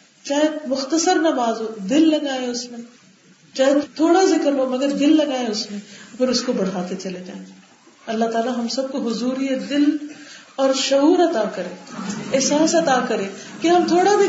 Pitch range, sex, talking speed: 210-285 Hz, female, 170 wpm